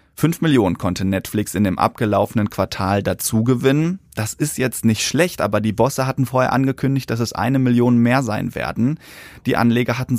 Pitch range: 110-130 Hz